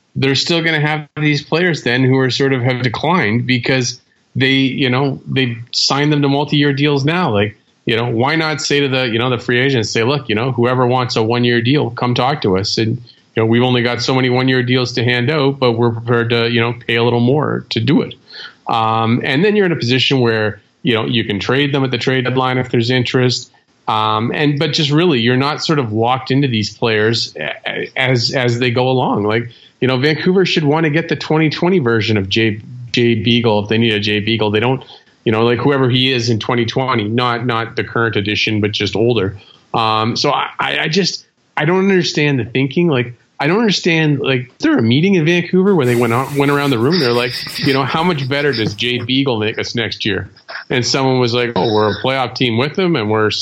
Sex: male